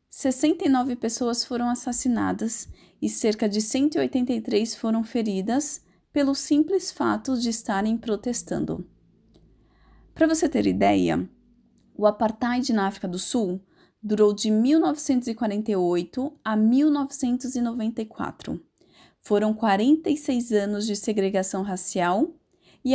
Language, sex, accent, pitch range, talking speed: Portuguese, female, Brazilian, 210-265 Hz, 100 wpm